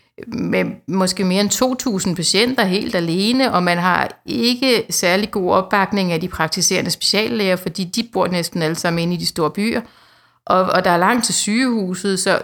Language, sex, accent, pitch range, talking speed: Danish, female, native, 180-215 Hz, 185 wpm